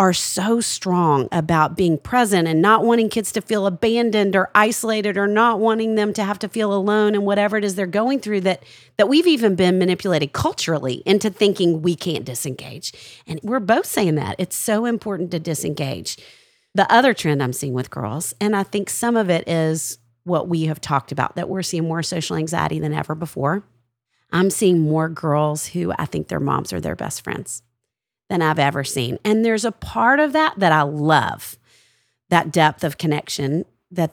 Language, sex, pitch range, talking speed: English, female, 150-195 Hz, 195 wpm